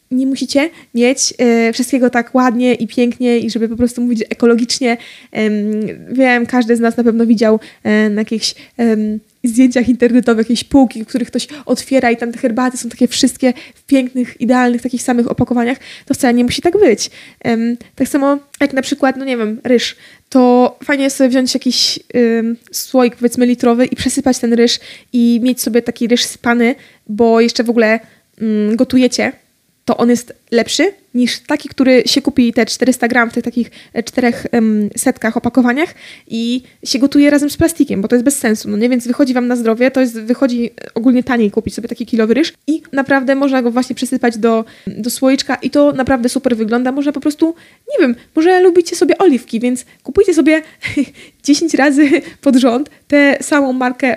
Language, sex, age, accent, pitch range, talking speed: Polish, female, 20-39, native, 235-275 Hz, 180 wpm